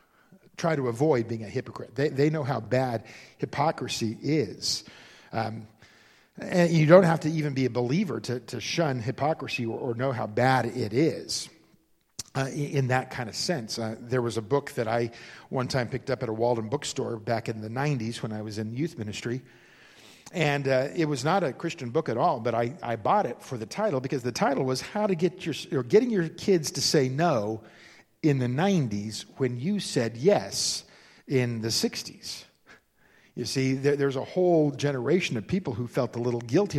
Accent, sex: American, male